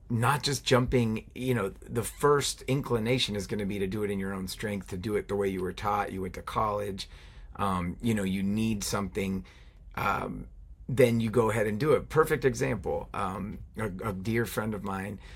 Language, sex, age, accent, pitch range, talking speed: English, male, 30-49, American, 95-115 Hz, 210 wpm